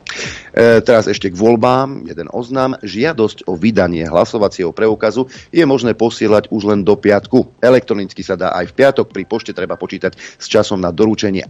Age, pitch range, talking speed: 40-59, 100-120 Hz, 165 wpm